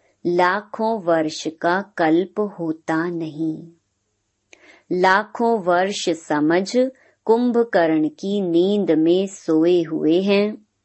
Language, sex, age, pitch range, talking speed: Hindi, male, 30-49, 155-205 Hz, 90 wpm